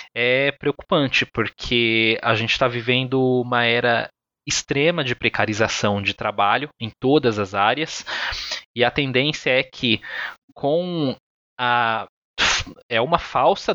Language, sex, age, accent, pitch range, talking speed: Portuguese, male, 20-39, Brazilian, 120-155 Hz, 120 wpm